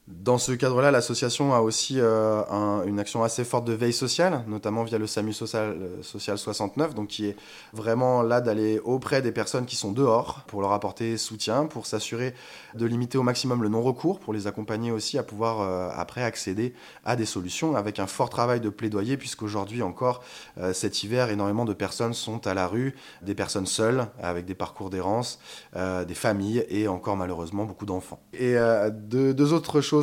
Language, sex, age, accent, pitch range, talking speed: French, male, 20-39, French, 100-120 Hz, 195 wpm